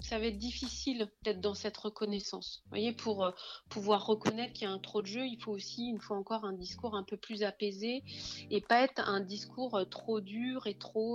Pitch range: 190-235 Hz